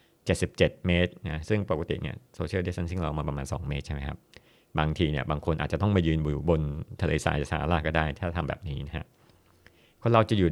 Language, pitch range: Thai, 75-95 Hz